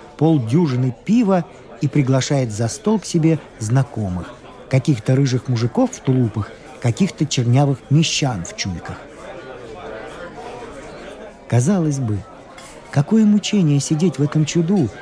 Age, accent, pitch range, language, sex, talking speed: 50-69, native, 135-185 Hz, Russian, male, 110 wpm